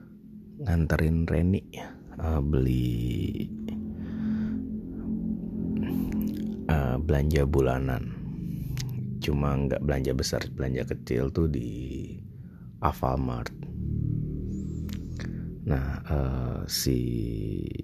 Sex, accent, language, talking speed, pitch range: male, Indonesian, English, 65 wpm, 65-100 Hz